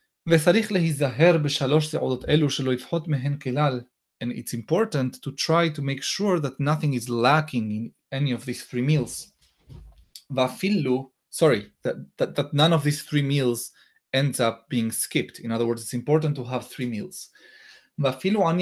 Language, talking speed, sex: English, 130 wpm, male